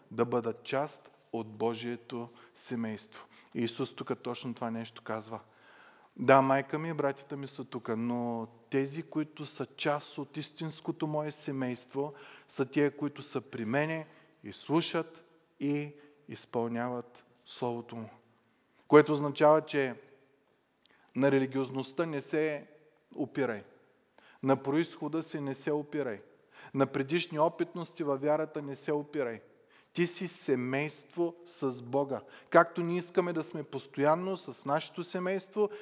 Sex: male